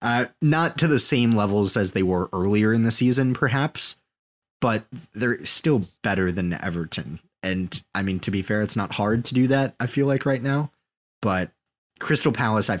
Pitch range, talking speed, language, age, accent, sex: 100-140 Hz, 190 wpm, English, 20-39, American, male